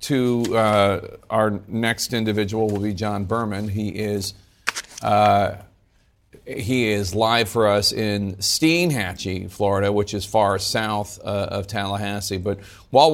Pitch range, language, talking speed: 100-115 Hz, English, 135 wpm